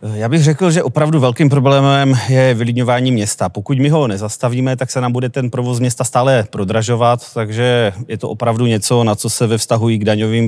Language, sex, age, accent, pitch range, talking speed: Czech, male, 30-49, native, 105-120 Hz, 205 wpm